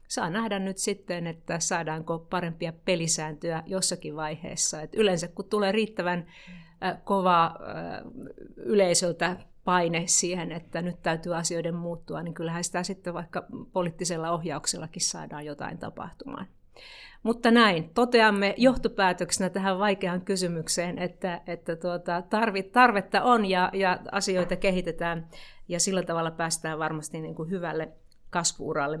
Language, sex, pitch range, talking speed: Finnish, female, 170-205 Hz, 115 wpm